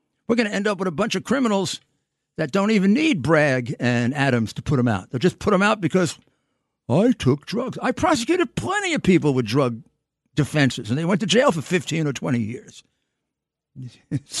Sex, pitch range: male, 145-220 Hz